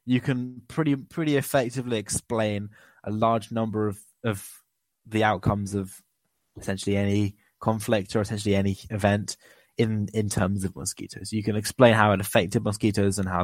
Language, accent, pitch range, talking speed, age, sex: English, British, 100-125 Hz, 155 wpm, 20-39, male